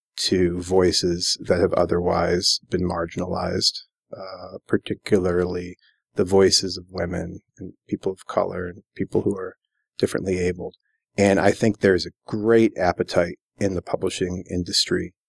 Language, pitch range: English, 95-110 Hz